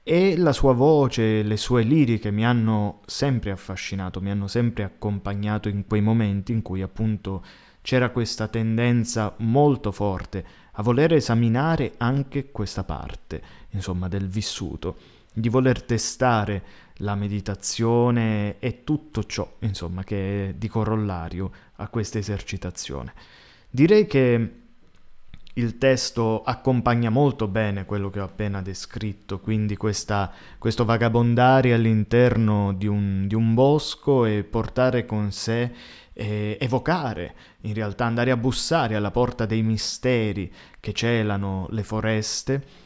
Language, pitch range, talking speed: Italian, 100-120 Hz, 125 wpm